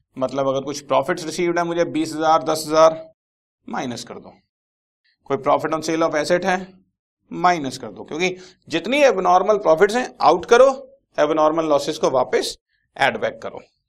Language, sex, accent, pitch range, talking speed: Hindi, male, native, 120-175 Hz, 145 wpm